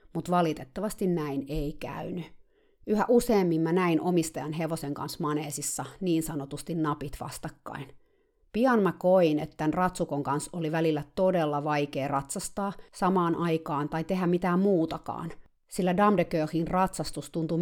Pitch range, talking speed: 150-185 Hz, 135 wpm